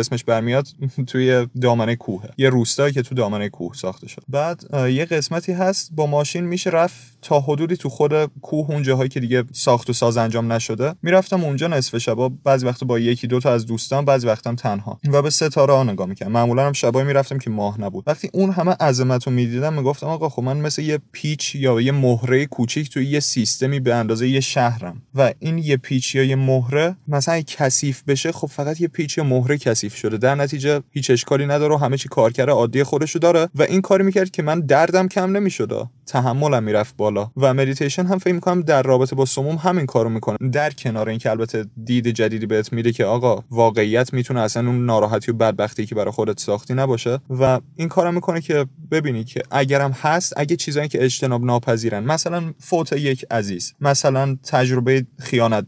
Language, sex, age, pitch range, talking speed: Persian, male, 30-49, 120-150 Hz, 200 wpm